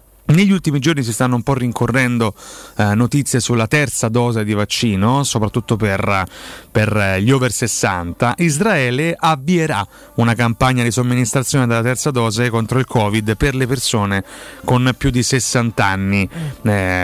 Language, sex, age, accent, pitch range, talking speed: Italian, male, 30-49, native, 110-130 Hz, 150 wpm